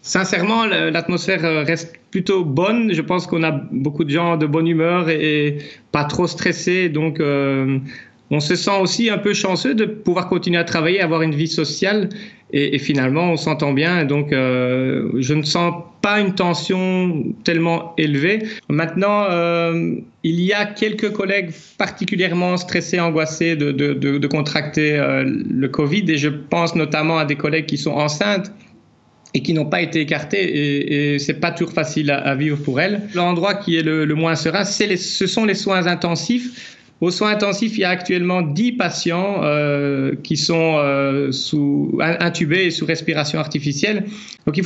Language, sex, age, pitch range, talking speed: French, male, 30-49, 150-190 Hz, 180 wpm